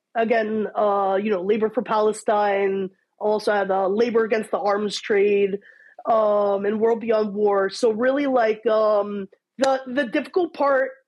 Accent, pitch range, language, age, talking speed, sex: American, 230-310 Hz, English, 20-39, 155 wpm, female